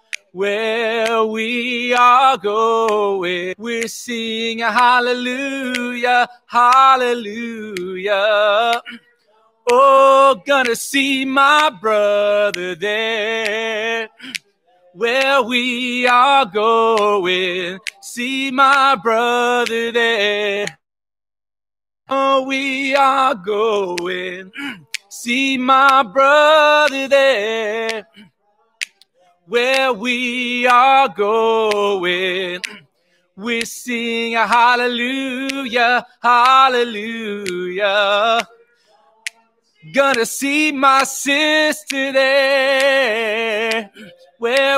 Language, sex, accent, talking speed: English, male, American, 60 wpm